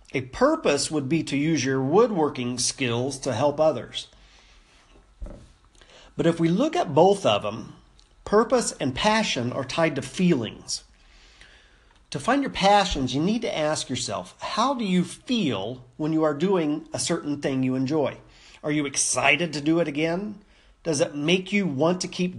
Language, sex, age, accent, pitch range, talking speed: English, male, 40-59, American, 130-180 Hz, 170 wpm